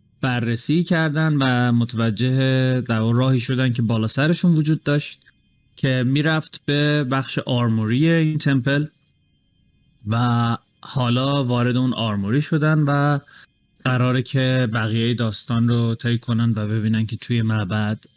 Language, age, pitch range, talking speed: Persian, 30-49, 115-140 Hz, 125 wpm